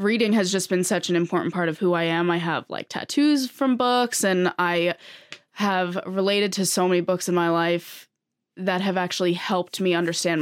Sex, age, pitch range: female, 20-39, 170-195 Hz